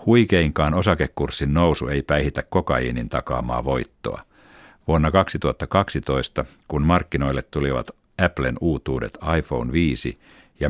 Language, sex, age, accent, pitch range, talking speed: Finnish, male, 50-69, native, 65-85 Hz, 100 wpm